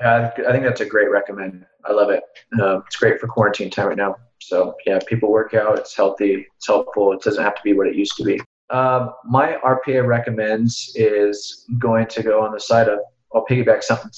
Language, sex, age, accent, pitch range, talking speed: English, male, 20-39, American, 110-130 Hz, 215 wpm